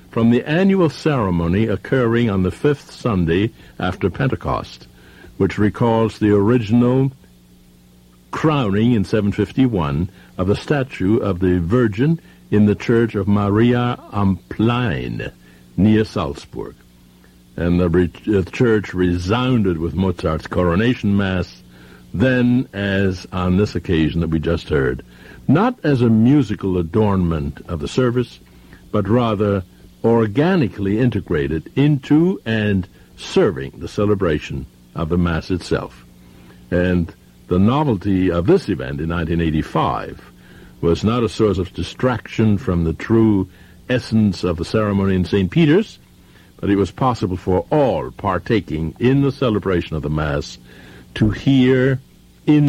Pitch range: 80-115 Hz